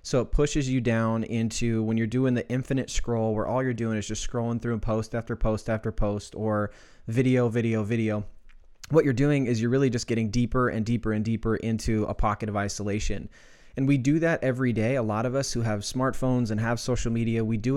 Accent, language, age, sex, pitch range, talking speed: American, English, 20-39, male, 110-125 Hz, 225 wpm